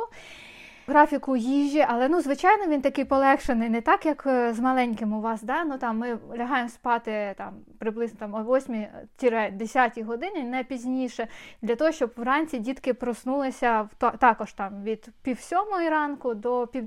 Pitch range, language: 235-290 Hz, Ukrainian